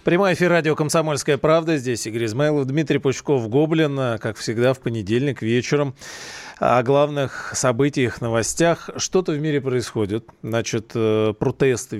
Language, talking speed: Russian, 130 wpm